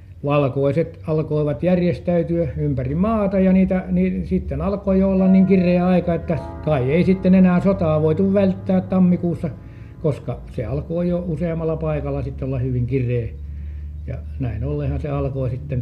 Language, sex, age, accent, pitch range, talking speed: Finnish, male, 60-79, native, 115-165 Hz, 150 wpm